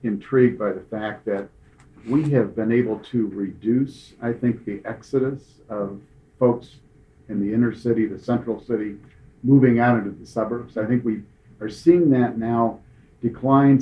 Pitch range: 110-125 Hz